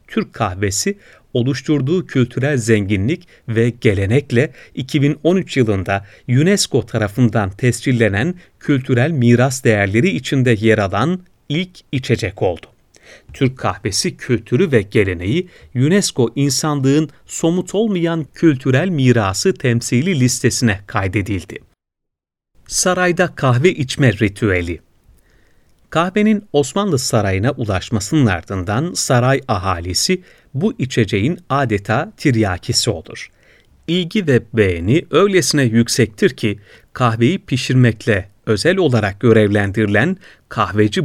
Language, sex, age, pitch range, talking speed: Turkish, male, 40-59, 110-155 Hz, 90 wpm